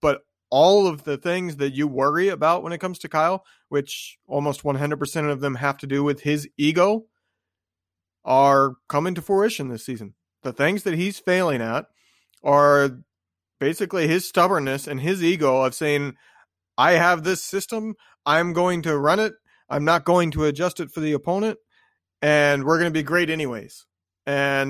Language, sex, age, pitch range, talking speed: English, male, 30-49, 145-190 Hz, 175 wpm